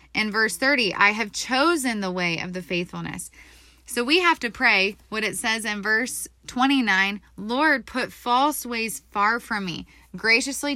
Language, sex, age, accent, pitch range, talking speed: English, female, 20-39, American, 190-240 Hz, 165 wpm